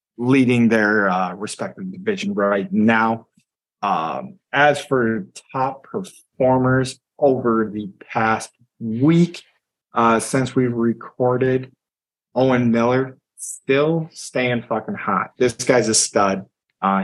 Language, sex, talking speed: English, male, 110 wpm